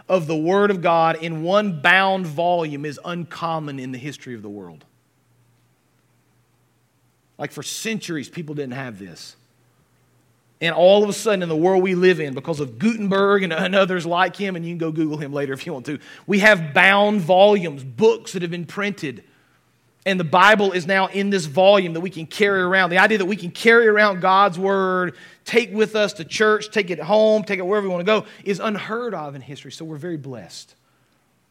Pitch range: 150-195 Hz